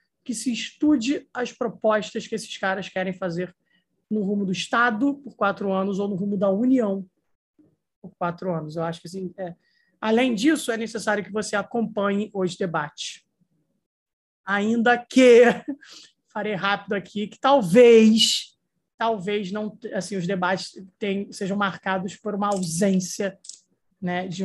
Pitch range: 180-215 Hz